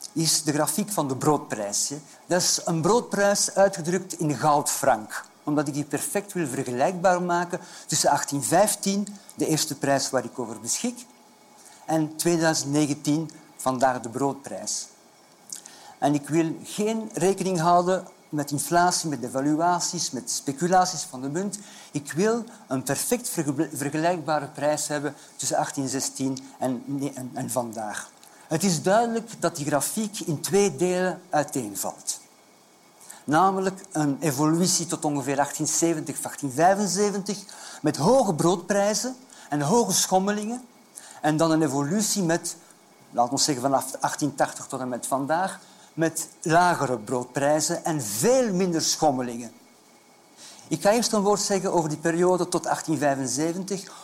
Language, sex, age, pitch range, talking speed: Dutch, male, 50-69, 145-190 Hz, 130 wpm